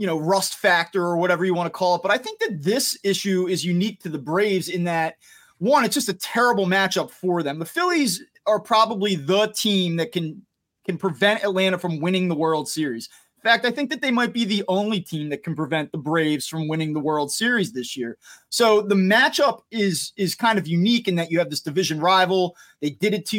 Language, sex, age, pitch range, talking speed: English, male, 30-49, 170-215 Hz, 230 wpm